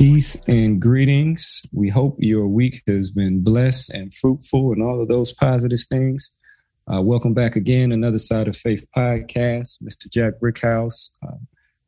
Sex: male